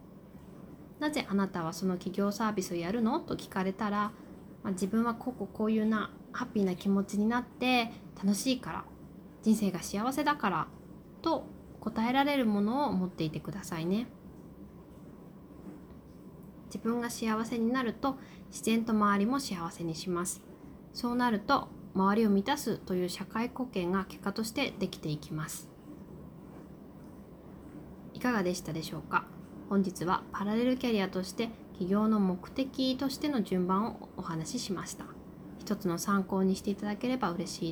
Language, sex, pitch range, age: Japanese, female, 180-225 Hz, 20-39